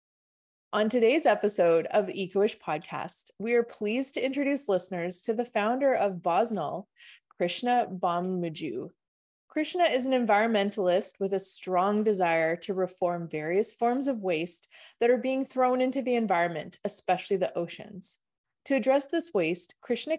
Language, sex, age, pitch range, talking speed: English, female, 20-39, 185-240 Hz, 145 wpm